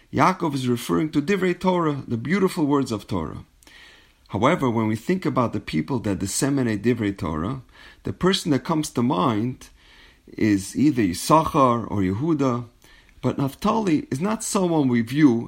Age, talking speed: 40-59, 155 wpm